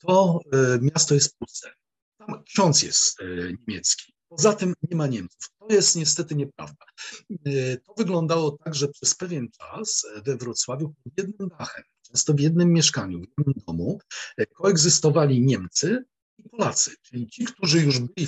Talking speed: 150 wpm